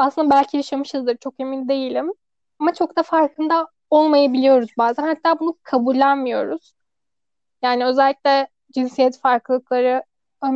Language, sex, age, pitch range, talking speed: Turkish, female, 10-29, 255-295 Hz, 115 wpm